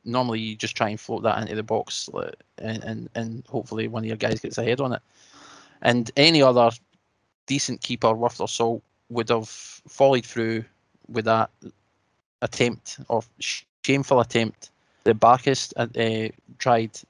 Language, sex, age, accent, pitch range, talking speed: English, male, 20-39, British, 110-125 Hz, 155 wpm